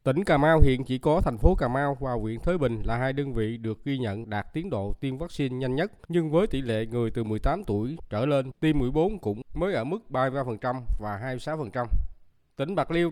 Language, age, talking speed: Vietnamese, 20-39, 230 wpm